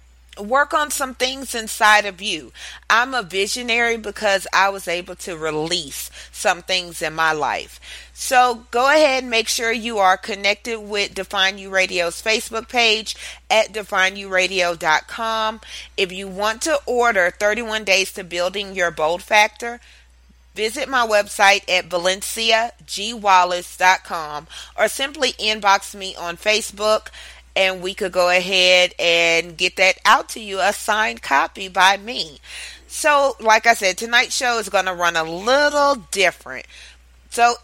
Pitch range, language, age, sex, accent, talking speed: 175-225 Hz, English, 30-49, female, American, 145 wpm